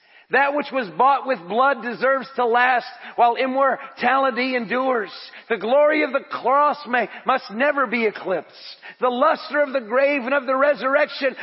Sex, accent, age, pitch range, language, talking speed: male, American, 40-59, 215-275 Hz, English, 165 wpm